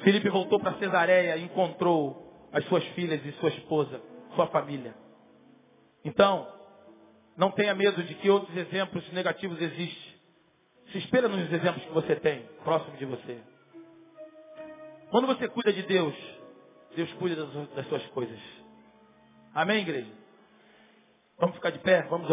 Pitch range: 165-235 Hz